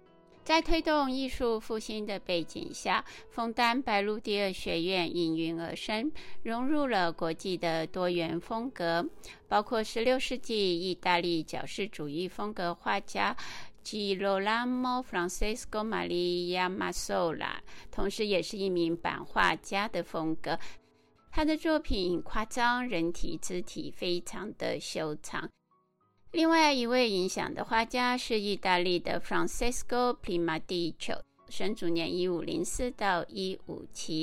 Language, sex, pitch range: Chinese, female, 170-240 Hz